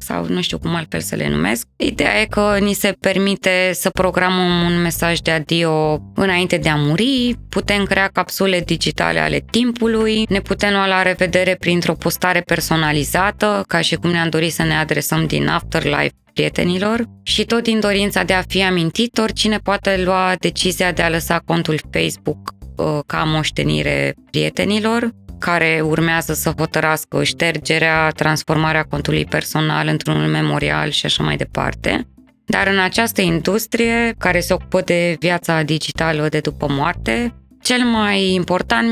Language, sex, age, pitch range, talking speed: Romanian, female, 20-39, 155-185 Hz, 155 wpm